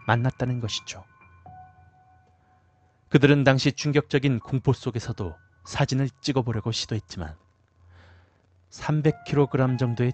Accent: native